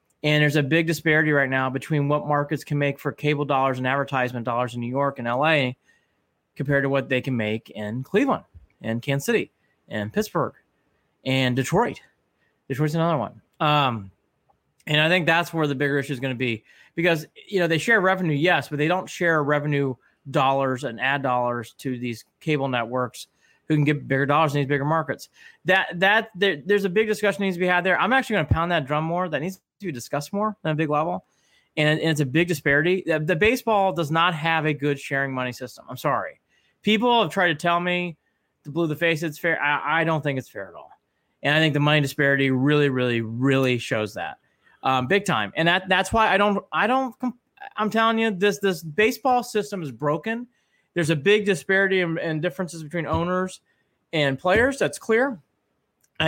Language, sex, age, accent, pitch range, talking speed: English, male, 30-49, American, 135-180 Hz, 210 wpm